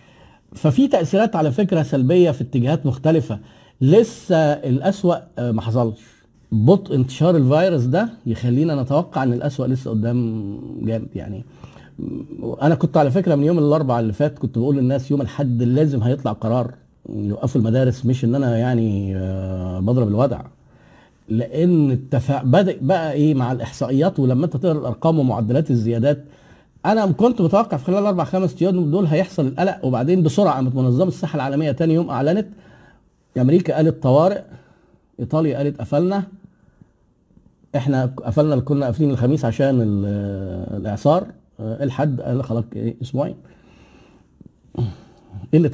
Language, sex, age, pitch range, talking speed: Arabic, male, 50-69, 120-165 Hz, 130 wpm